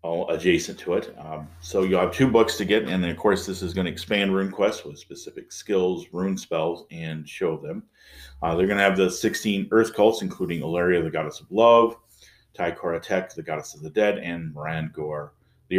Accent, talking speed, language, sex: American, 215 wpm, English, male